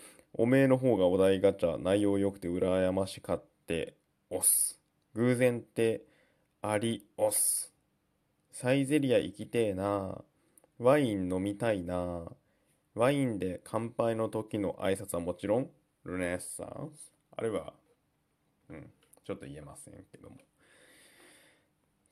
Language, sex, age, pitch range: Japanese, male, 20-39, 90-115 Hz